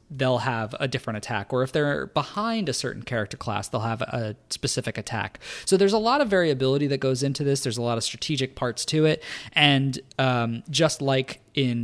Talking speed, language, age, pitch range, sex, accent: 210 wpm, English, 20-39, 115-150 Hz, male, American